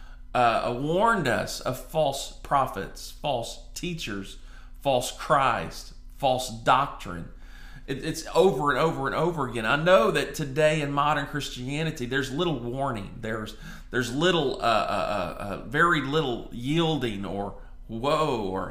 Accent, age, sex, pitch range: American, 40-59, male, 105-155 Hz